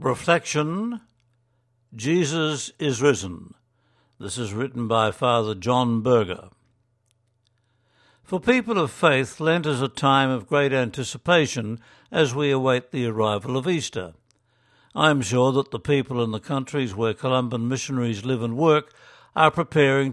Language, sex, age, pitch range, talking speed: English, male, 60-79, 120-145 Hz, 135 wpm